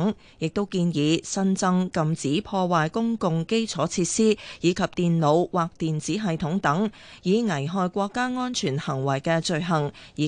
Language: Chinese